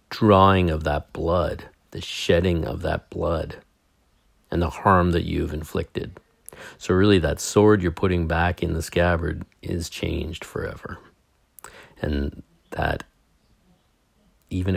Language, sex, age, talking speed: English, male, 50-69, 125 wpm